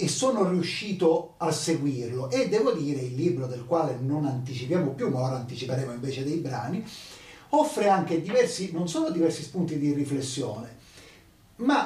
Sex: male